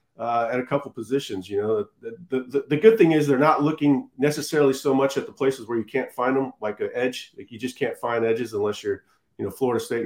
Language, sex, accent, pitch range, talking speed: English, male, American, 125-140 Hz, 255 wpm